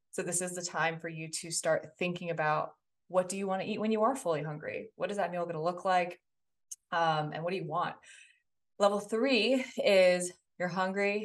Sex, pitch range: female, 165-200 Hz